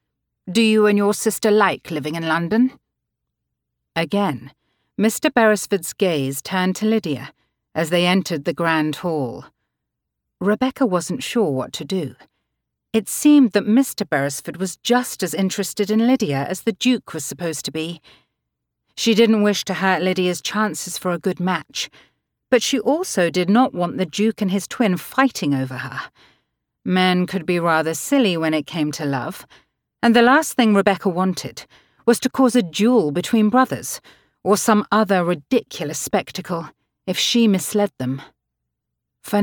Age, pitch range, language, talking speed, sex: 40-59, 160-215 Hz, English, 160 wpm, female